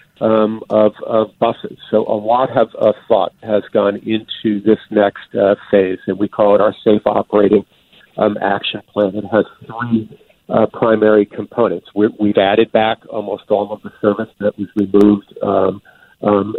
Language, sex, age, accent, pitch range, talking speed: English, male, 50-69, American, 105-115 Hz, 170 wpm